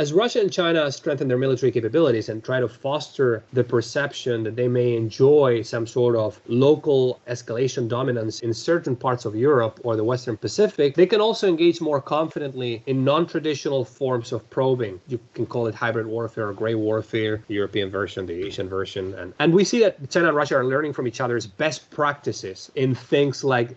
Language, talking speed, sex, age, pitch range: English, 195 wpm, male, 30-49, 115-145 Hz